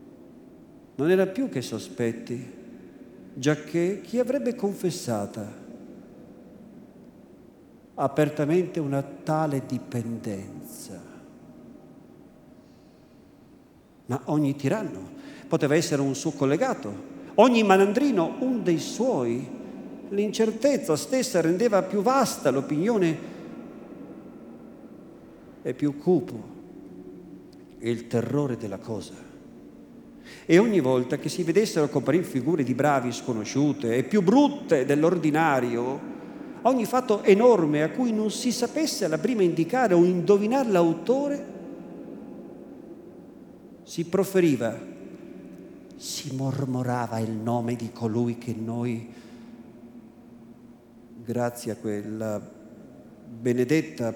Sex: male